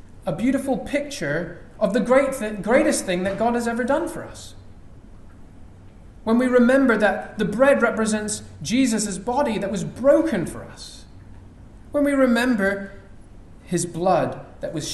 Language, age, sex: English, 30-49, male